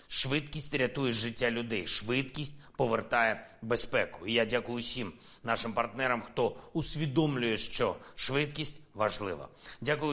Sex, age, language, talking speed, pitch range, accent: male, 30-49, Ukrainian, 115 wpm, 115-140 Hz, native